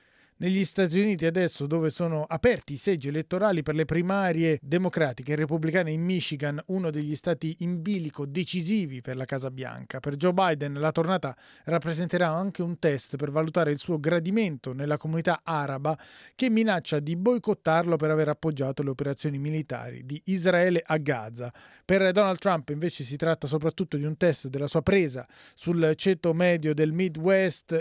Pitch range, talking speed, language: 150-185 Hz, 165 wpm, Italian